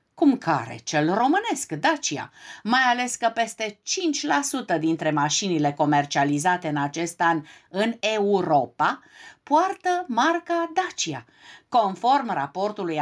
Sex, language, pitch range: female, Romanian, 160-245 Hz